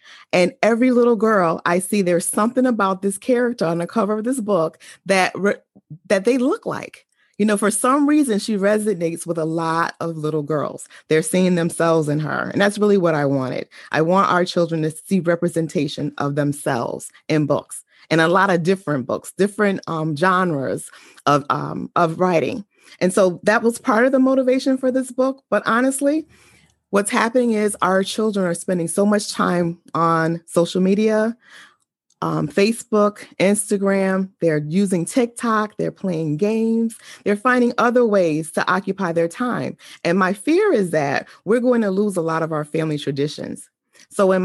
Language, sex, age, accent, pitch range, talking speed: English, female, 30-49, American, 165-220 Hz, 175 wpm